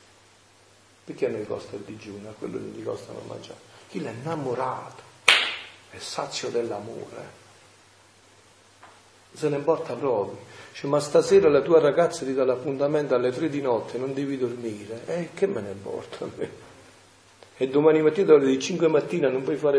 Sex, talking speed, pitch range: male, 170 wpm, 100-160 Hz